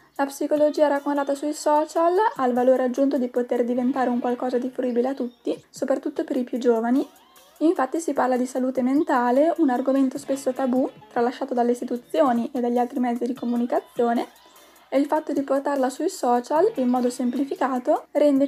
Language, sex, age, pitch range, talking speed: Italian, female, 10-29, 250-295 Hz, 170 wpm